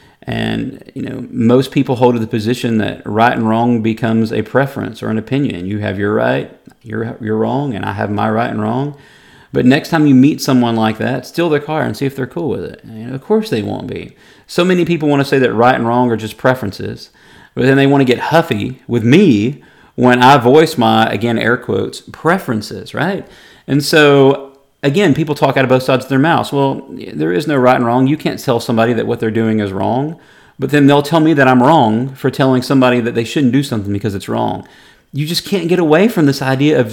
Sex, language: male, English